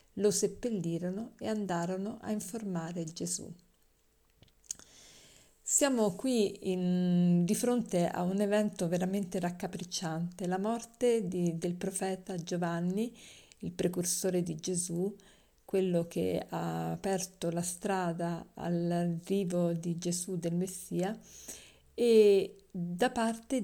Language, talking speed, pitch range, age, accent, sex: Italian, 105 wpm, 175-215 Hz, 50-69, native, female